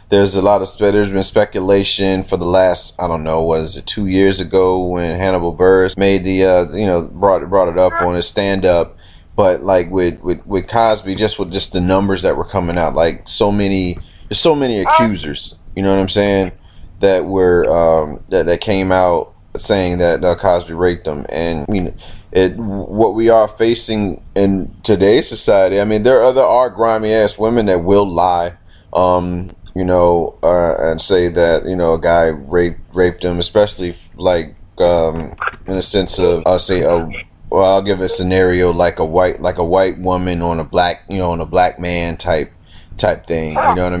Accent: American